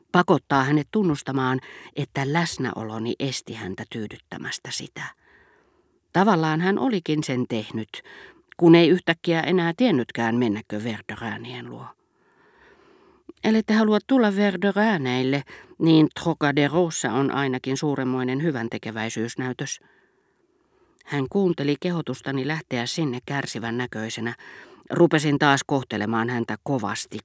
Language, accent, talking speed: Finnish, native, 95 wpm